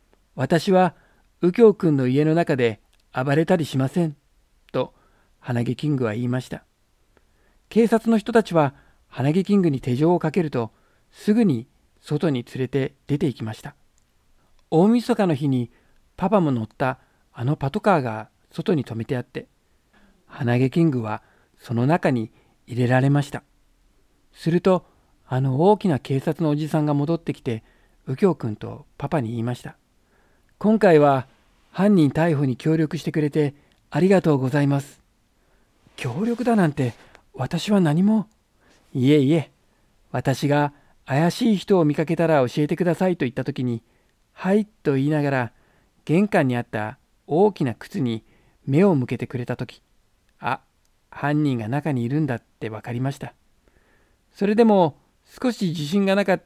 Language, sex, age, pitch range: Japanese, male, 50-69, 125-175 Hz